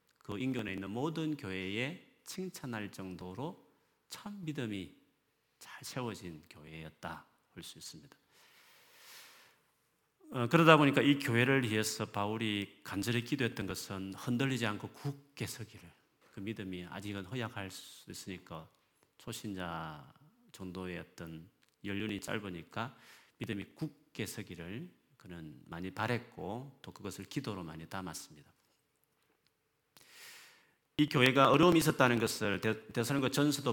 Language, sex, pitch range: Korean, male, 95-130 Hz